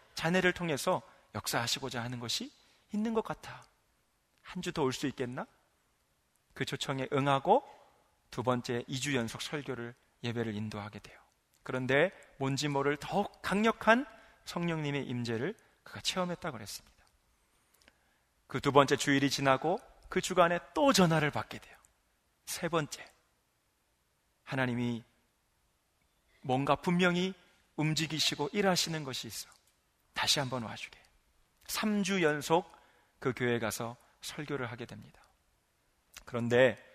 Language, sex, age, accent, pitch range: Korean, male, 30-49, native, 120-175 Hz